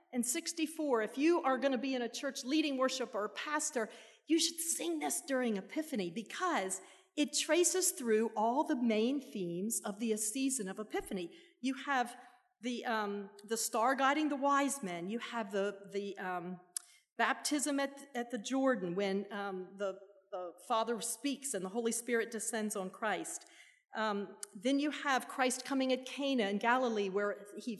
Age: 40-59